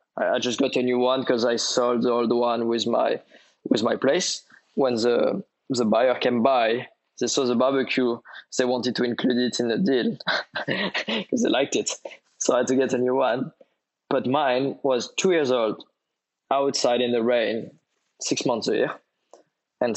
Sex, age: male, 20-39